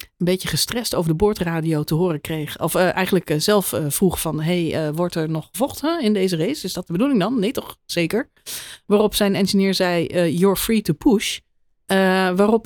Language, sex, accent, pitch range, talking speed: Dutch, female, Dutch, 155-205 Hz, 220 wpm